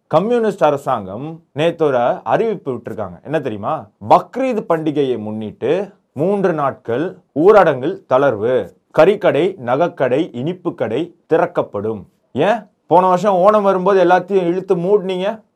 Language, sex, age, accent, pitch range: Tamil, male, 30-49, native, 145-195 Hz